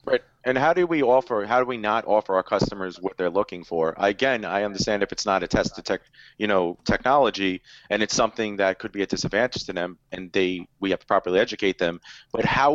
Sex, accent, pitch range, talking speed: male, American, 105-135 Hz, 235 wpm